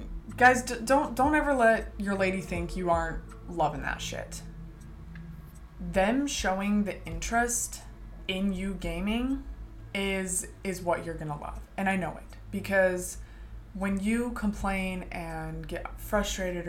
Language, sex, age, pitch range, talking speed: English, female, 20-39, 160-205 Hz, 135 wpm